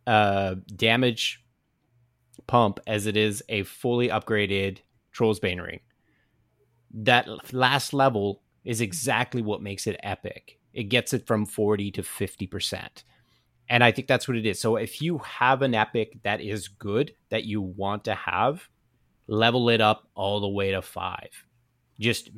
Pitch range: 100-125 Hz